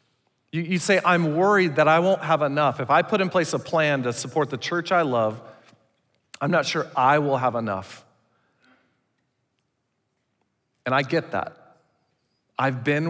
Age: 40-59